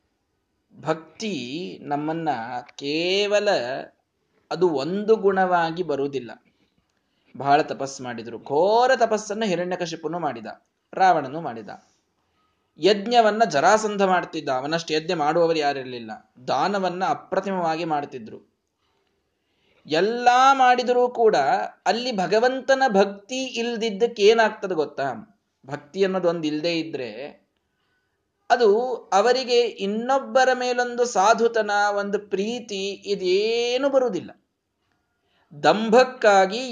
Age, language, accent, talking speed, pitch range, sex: 20-39, Kannada, native, 80 wpm, 160-230 Hz, male